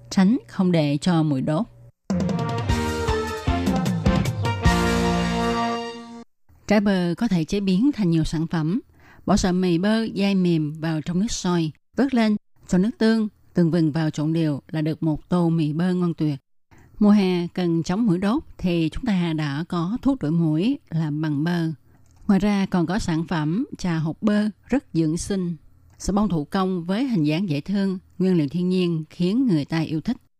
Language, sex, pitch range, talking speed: Vietnamese, female, 155-195 Hz, 180 wpm